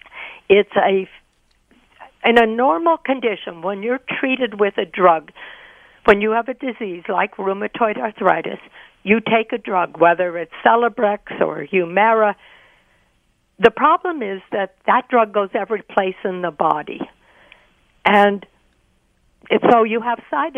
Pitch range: 190-240 Hz